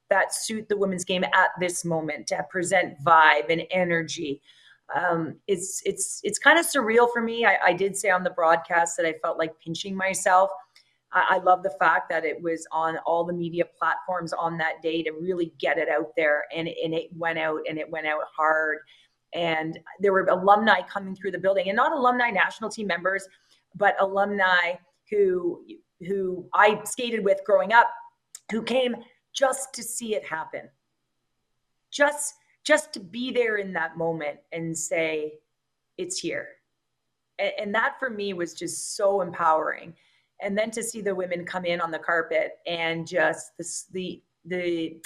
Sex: female